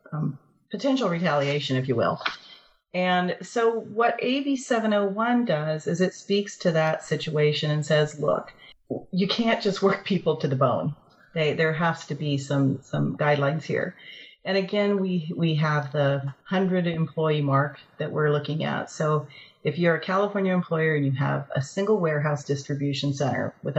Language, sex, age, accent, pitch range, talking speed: English, female, 40-59, American, 145-190 Hz, 165 wpm